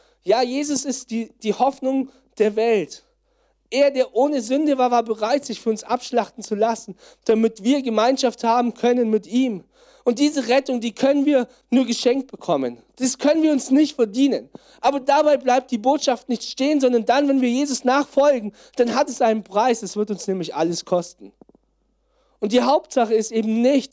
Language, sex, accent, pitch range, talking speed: German, male, German, 220-270 Hz, 185 wpm